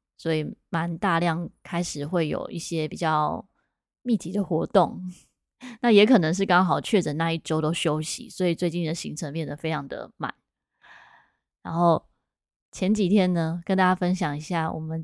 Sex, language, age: female, Chinese, 20-39